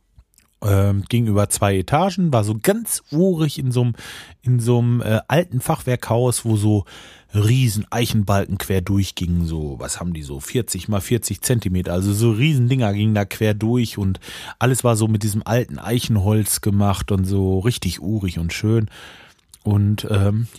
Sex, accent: male, German